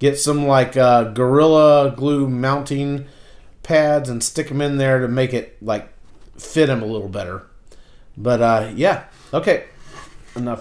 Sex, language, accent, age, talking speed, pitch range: male, English, American, 40-59, 155 wpm, 130-180 Hz